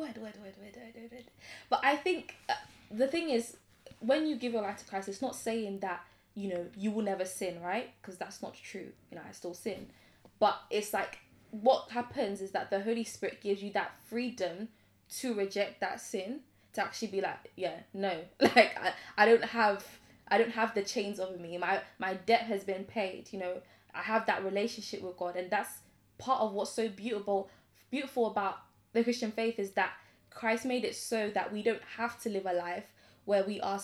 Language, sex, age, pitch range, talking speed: English, female, 10-29, 195-235 Hz, 200 wpm